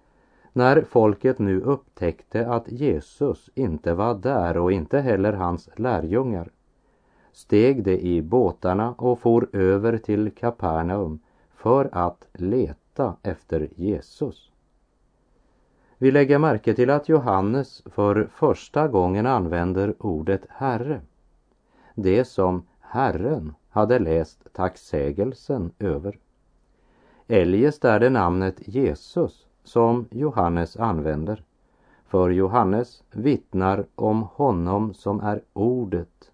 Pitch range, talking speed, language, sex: 90-120 Hz, 105 wpm, Hungarian, male